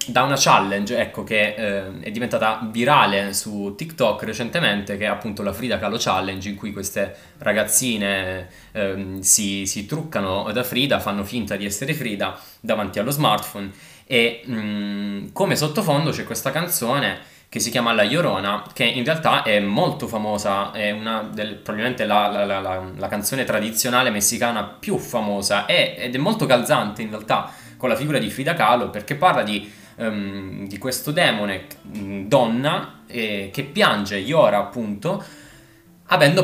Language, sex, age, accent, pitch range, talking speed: Italian, male, 20-39, native, 100-115 Hz, 155 wpm